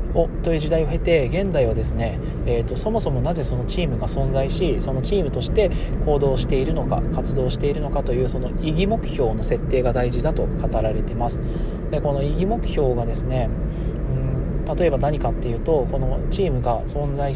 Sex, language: male, Japanese